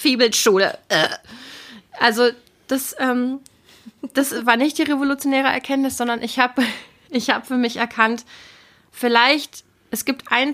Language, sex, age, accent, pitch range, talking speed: German, female, 30-49, German, 220-250 Hz, 130 wpm